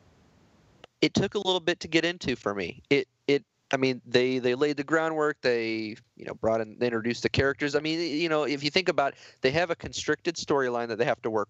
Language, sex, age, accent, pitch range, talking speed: English, male, 30-49, American, 115-140 Hz, 245 wpm